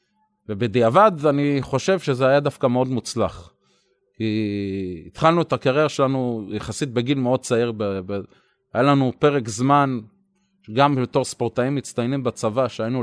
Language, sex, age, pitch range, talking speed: Hebrew, male, 30-49, 115-155 Hz, 135 wpm